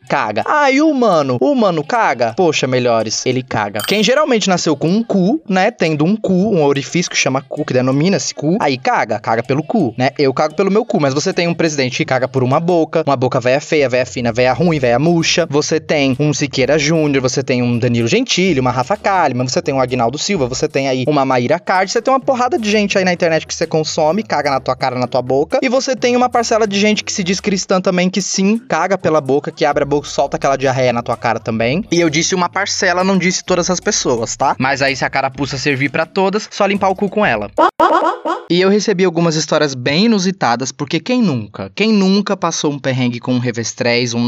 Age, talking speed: 20-39, 235 wpm